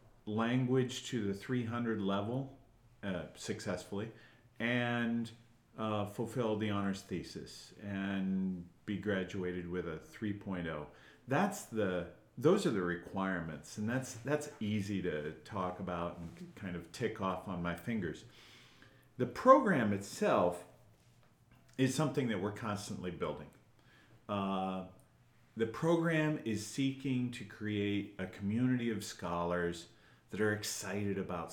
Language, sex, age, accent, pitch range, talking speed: English, male, 40-59, American, 95-115 Hz, 120 wpm